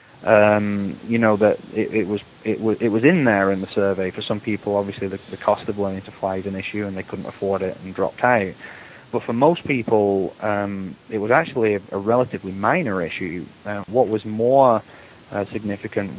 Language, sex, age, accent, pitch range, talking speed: English, male, 20-39, British, 100-115 Hz, 210 wpm